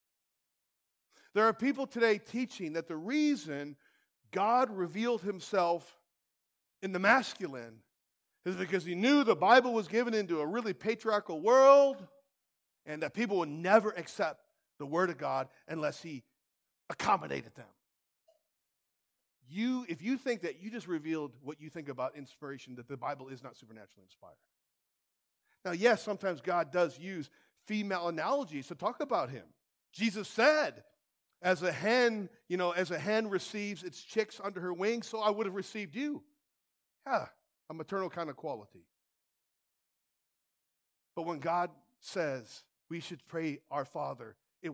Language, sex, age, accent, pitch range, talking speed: English, male, 40-59, American, 155-225 Hz, 150 wpm